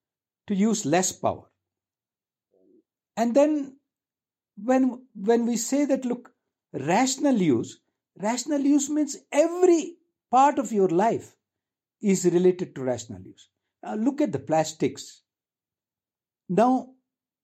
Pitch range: 180-280 Hz